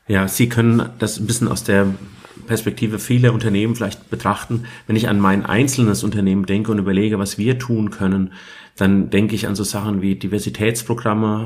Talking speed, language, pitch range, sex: 180 wpm, German, 95-110 Hz, male